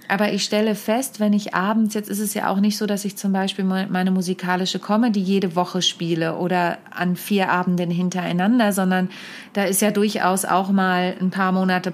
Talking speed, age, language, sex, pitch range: 195 wpm, 30-49, German, female, 185-215 Hz